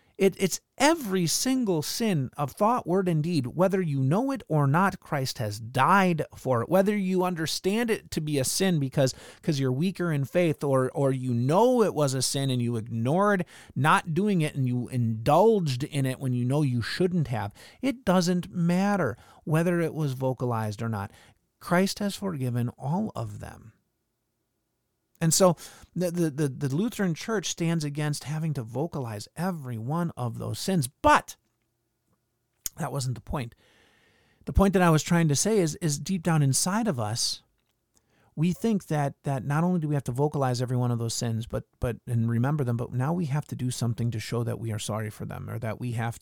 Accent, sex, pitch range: American, male, 120-175 Hz